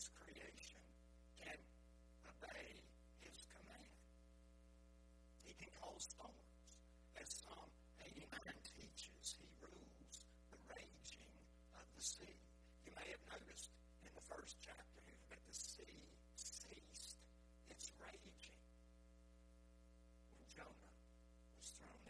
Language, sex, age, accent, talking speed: English, male, 60-79, American, 105 wpm